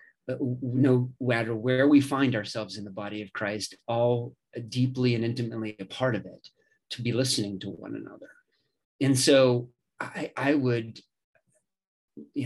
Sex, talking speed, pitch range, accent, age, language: male, 155 wpm, 115-135 Hz, American, 30-49, English